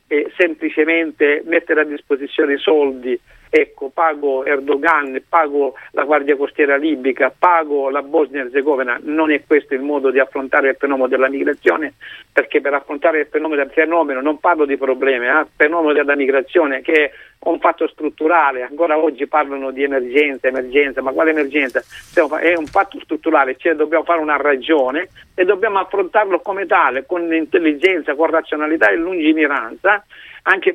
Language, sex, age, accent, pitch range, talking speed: Italian, male, 50-69, native, 145-180 Hz, 160 wpm